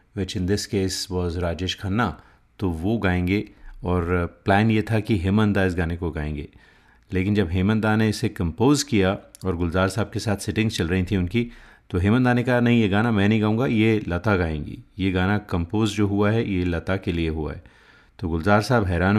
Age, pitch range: 30-49, 95-110 Hz